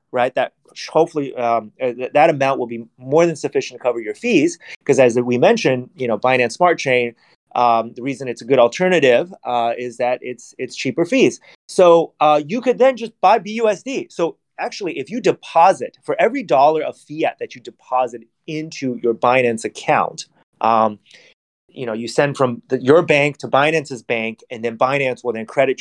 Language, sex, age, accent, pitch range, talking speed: English, male, 30-49, American, 120-160 Hz, 185 wpm